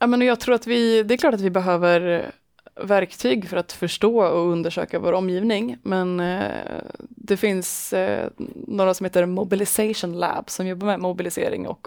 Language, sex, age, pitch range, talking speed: Swedish, female, 20-39, 175-210 Hz, 155 wpm